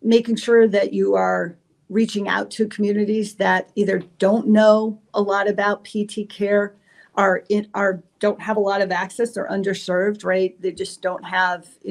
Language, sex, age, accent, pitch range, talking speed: English, female, 40-59, American, 180-205 Hz, 175 wpm